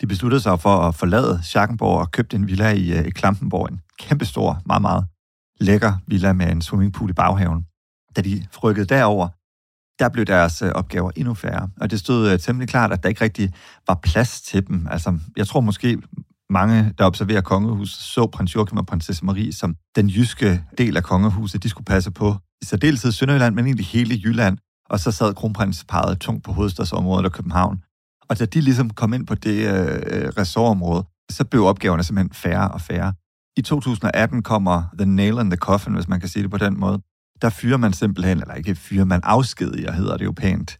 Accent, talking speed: native, 195 wpm